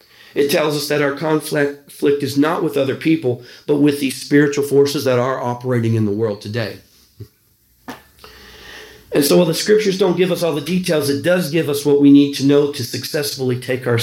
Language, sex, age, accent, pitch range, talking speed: English, male, 40-59, American, 120-150 Hz, 200 wpm